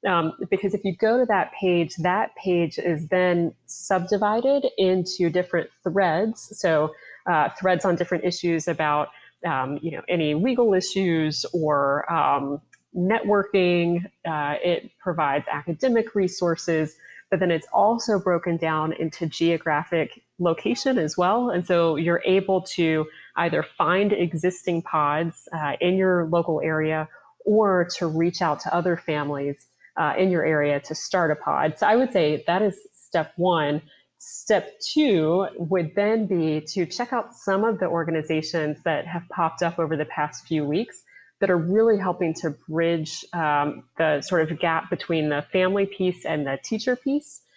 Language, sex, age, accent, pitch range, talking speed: English, female, 30-49, American, 160-195 Hz, 160 wpm